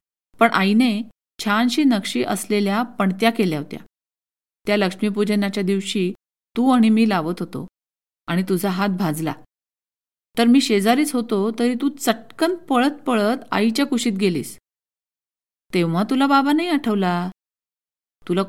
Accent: native